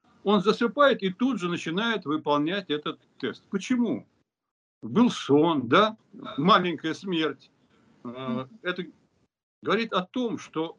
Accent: native